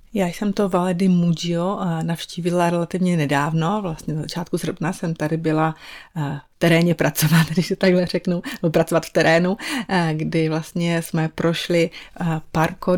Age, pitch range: 30-49, 160-180 Hz